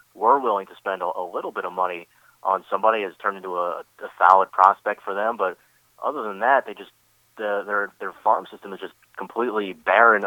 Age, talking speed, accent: 30-49, 200 wpm, American